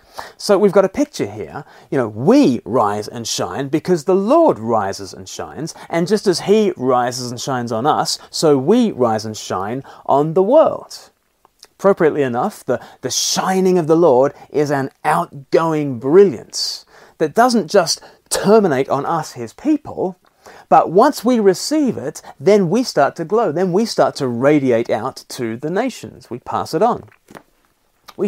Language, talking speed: English, 170 wpm